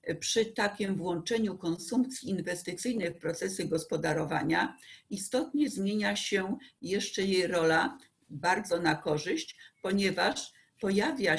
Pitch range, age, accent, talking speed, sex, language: 175-225 Hz, 50-69, native, 100 wpm, female, Polish